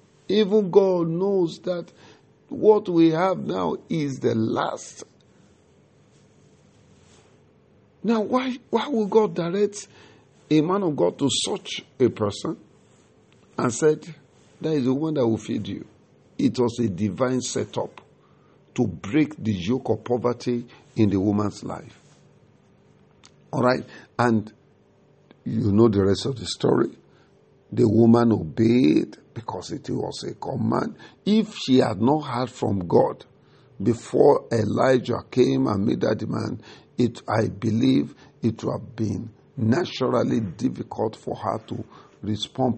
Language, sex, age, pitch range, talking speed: English, male, 50-69, 110-155 Hz, 135 wpm